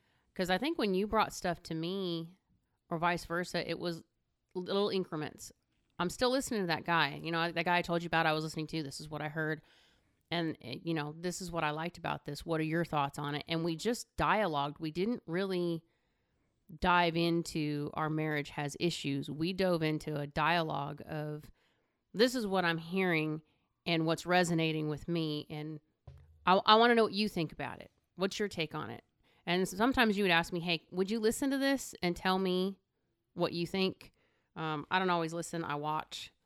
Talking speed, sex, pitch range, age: 205 wpm, female, 150-180 Hz, 30-49